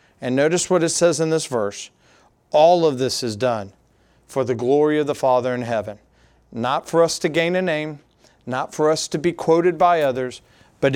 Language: English